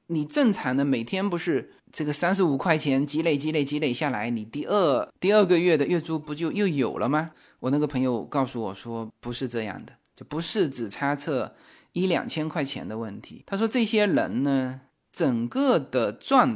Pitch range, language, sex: 130-210 Hz, Chinese, male